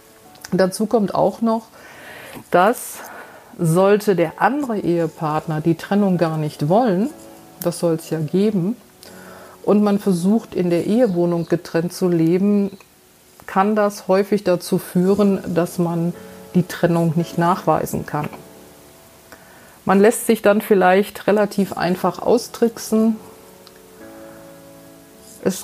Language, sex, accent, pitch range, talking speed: German, female, German, 170-205 Hz, 115 wpm